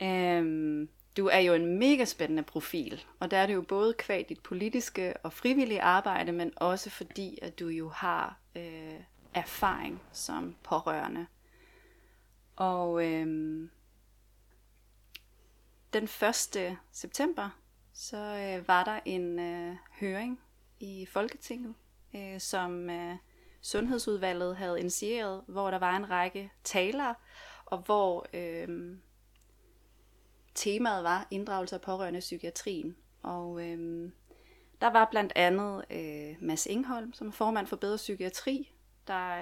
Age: 30-49